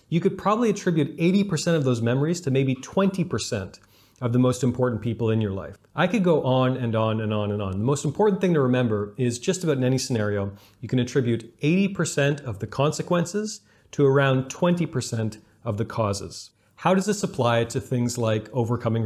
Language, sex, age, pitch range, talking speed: English, male, 40-59, 110-140 Hz, 195 wpm